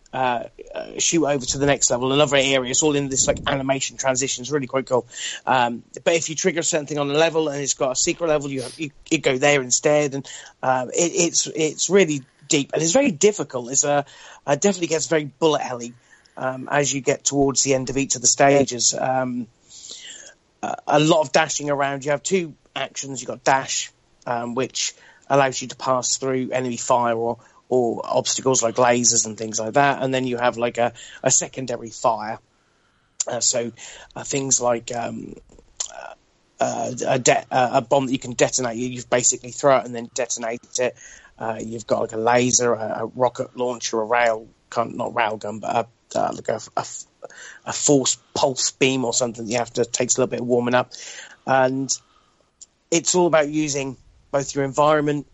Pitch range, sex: 120-145 Hz, male